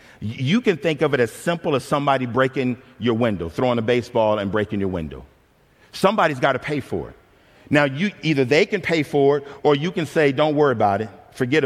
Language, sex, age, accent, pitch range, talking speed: English, male, 50-69, American, 125-155 Hz, 210 wpm